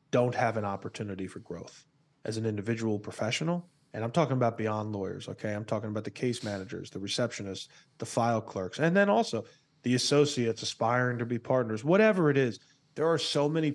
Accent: American